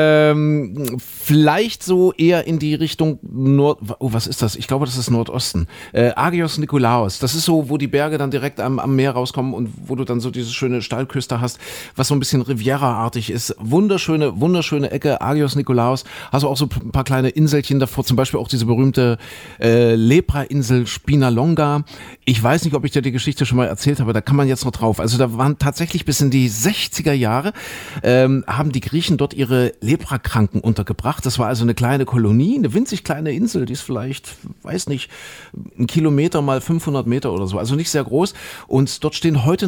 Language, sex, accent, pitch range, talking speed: German, male, German, 120-150 Hz, 205 wpm